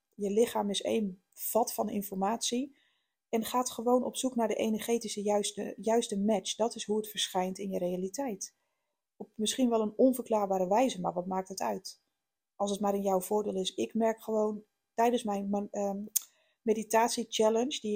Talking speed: 175 wpm